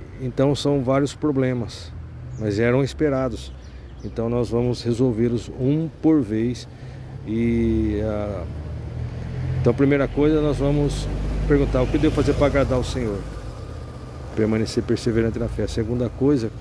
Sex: male